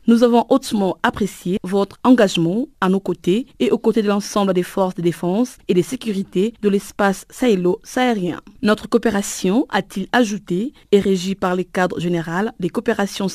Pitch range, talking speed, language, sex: 185-230 Hz, 160 wpm, French, female